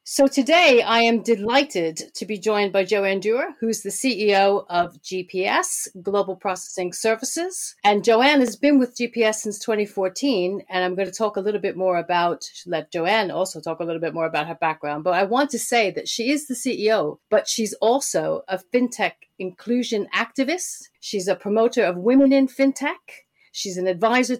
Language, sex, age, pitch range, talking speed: English, female, 40-59, 180-235 Hz, 185 wpm